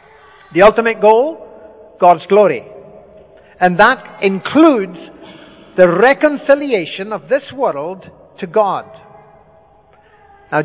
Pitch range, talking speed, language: 165-210 Hz, 90 wpm, English